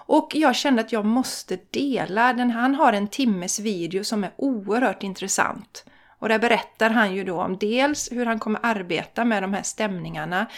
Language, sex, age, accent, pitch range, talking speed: Swedish, female, 30-49, native, 185-240 Hz, 185 wpm